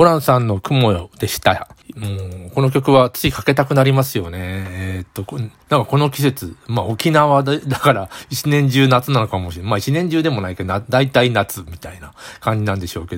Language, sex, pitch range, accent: Japanese, male, 100-135 Hz, native